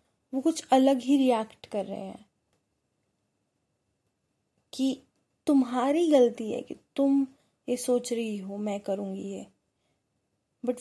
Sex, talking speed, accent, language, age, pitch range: female, 120 wpm, native, Hindi, 20-39, 220-265 Hz